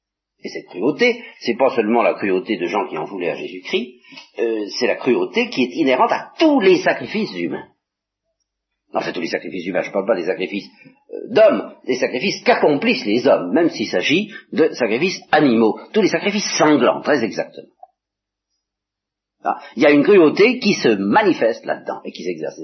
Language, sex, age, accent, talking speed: French, male, 50-69, French, 190 wpm